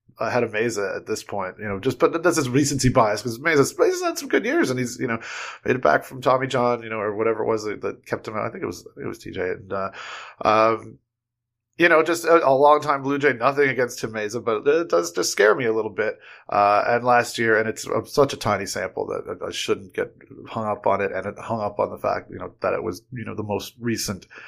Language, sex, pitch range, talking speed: English, male, 110-150 Hz, 275 wpm